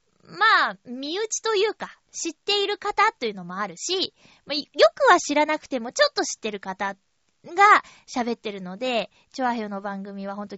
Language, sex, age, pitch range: Japanese, female, 20-39, 210-305 Hz